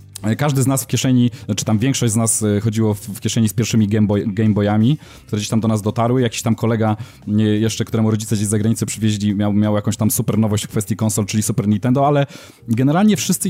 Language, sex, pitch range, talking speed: Polish, male, 105-125 Hz, 220 wpm